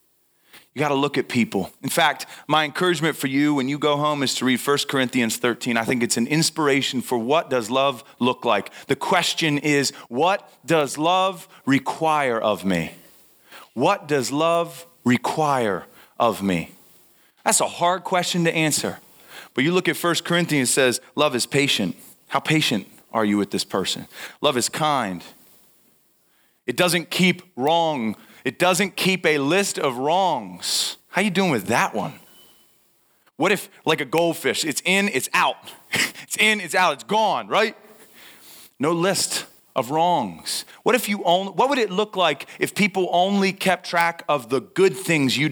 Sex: male